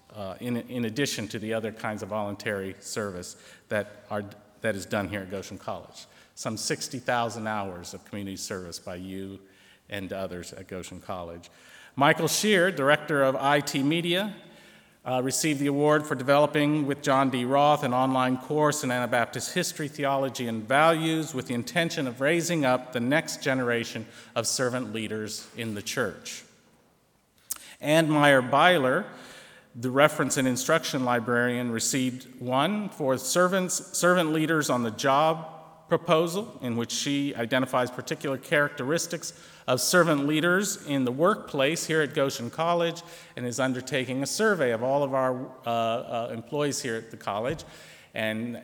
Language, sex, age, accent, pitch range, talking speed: English, male, 50-69, American, 115-150 Hz, 155 wpm